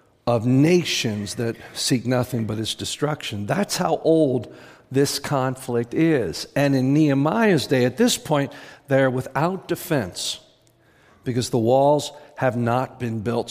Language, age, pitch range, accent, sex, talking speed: English, 50-69, 130-180 Hz, American, male, 140 wpm